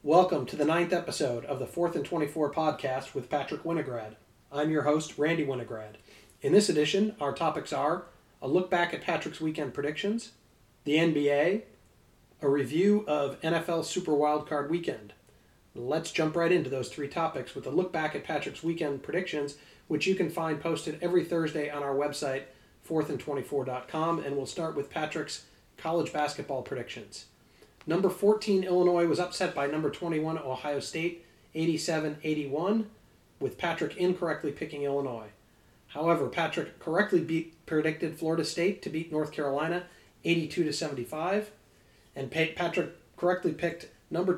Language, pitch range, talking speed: English, 145-175 Hz, 145 wpm